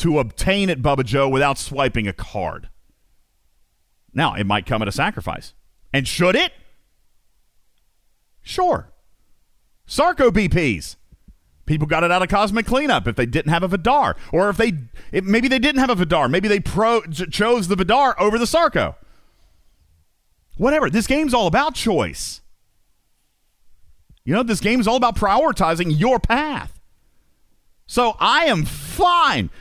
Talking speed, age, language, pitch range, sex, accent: 150 wpm, 40-59, English, 135-205 Hz, male, American